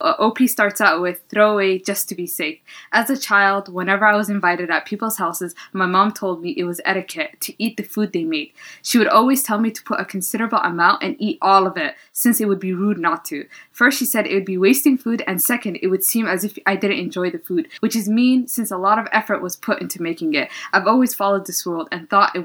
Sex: female